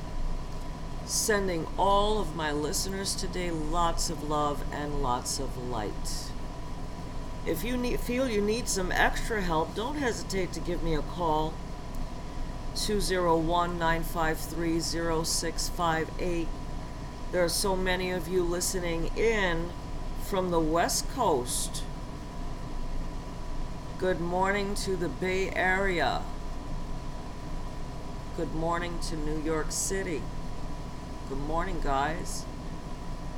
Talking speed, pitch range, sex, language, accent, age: 100 wpm, 145-180 Hz, female, English, American, 50-69